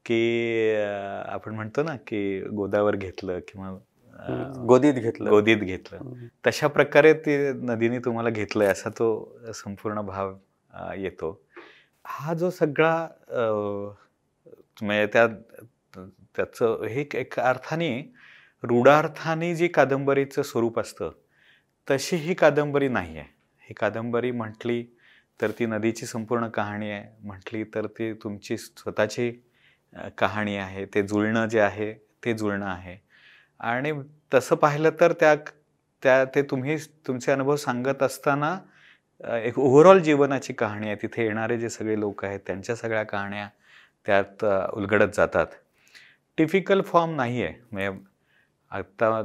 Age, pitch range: 30-49, 100-135 Hz